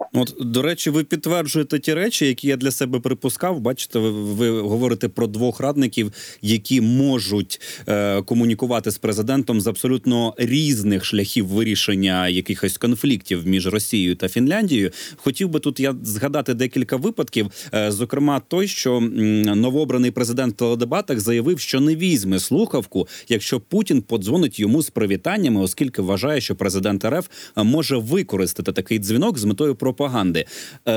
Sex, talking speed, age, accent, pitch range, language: male, 145 wpm, 30-49, native, 105-140 Hz, Ukrainian